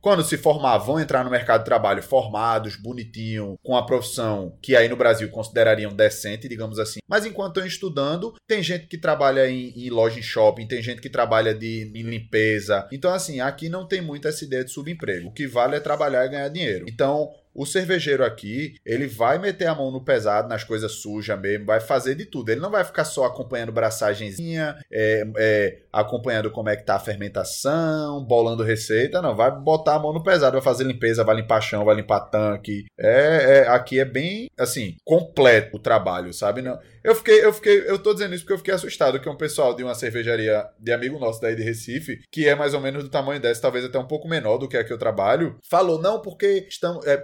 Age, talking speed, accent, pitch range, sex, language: 20-39, 215 wpm, Brazilian, 115-165 Hz, male, Portuguese